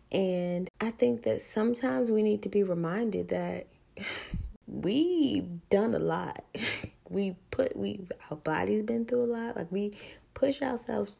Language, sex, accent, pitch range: English, female, American, 170-230 Hz